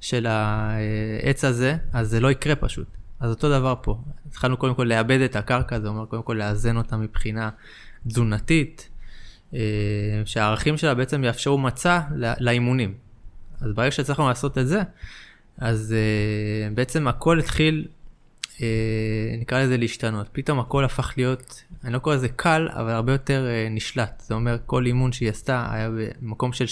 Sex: male